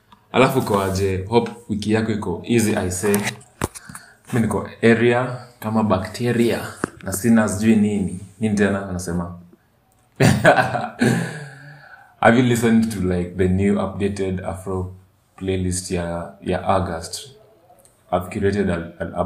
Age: 20-39